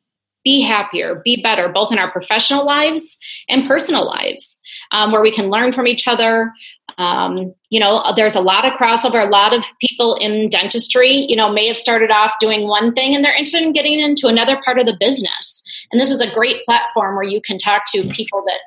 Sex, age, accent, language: female, 30-49, American, English